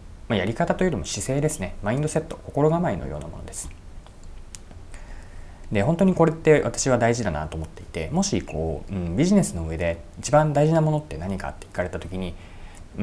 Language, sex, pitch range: Japanese, male, 85-125 Hz